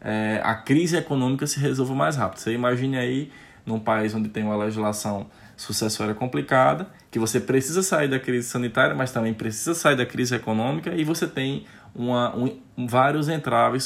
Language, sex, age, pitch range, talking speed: Portuguese, male, 20-39, 105-130 Hz, 160 wpm